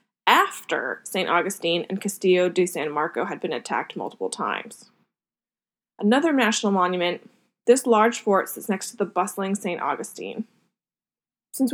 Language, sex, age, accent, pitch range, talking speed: English, female, 20-39, American, 195-250 Hz, 140 wpm